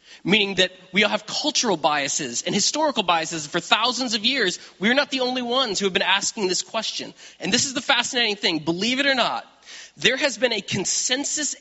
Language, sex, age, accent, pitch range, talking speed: English, male, 30-49, American, 170-240 Hz, 205 wpm